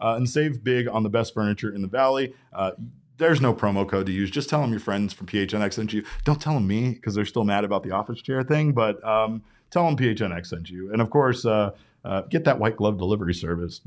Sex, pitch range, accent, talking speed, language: male, 105-135 Hz, American, 250 wpm, English